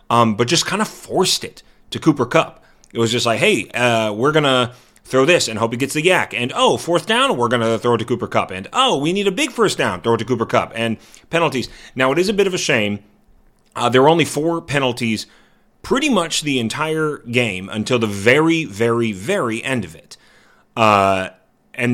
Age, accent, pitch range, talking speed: 30-49, American, 110-150 Hz, 225 wpm